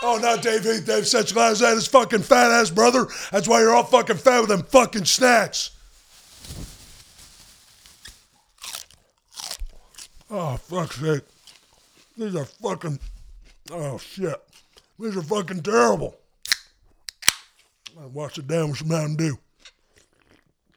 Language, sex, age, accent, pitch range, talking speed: English, male, 60-79, American, 150-210 Hz, 120 wpm